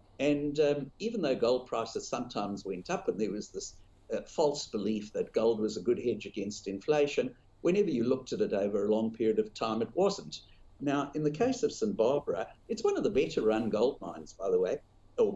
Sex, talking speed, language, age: male, 215 wpm, English, 60-79